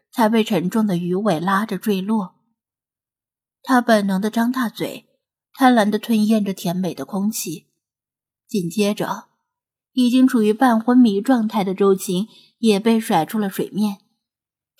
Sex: female